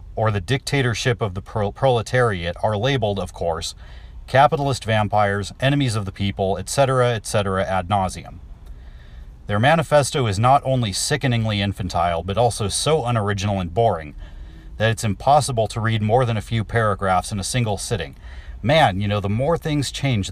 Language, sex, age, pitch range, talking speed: English, male, 40-59, 90-120 Hz, 160 wpm